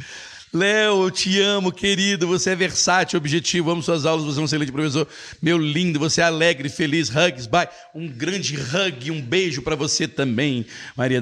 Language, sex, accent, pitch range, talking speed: Portuguese, male, Brazilian, 130-180 Hz, 180 wpm